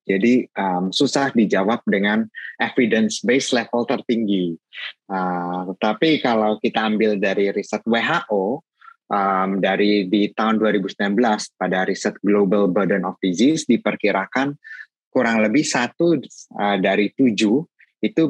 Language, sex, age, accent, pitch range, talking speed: English, male, 20-39, Indonesian, 100-125 Hz, 120 wpm